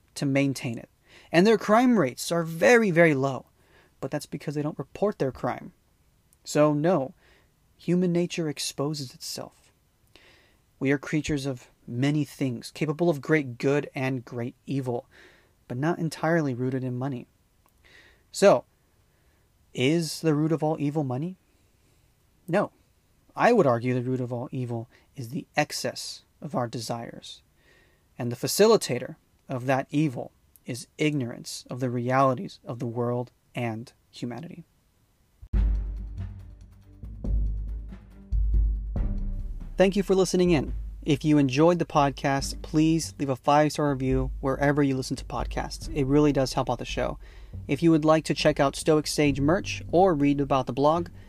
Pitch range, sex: 120-155 Hz, male